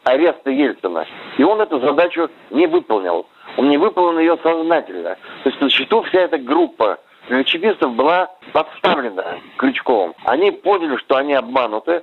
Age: 60-79